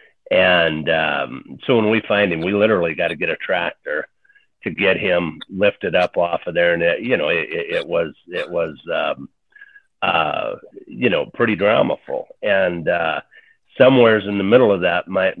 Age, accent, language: 50-69, American, English